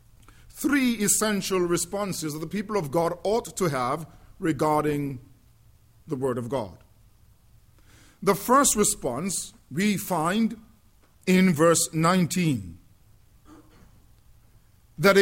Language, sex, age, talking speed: English, male, 50-69, 100 wpm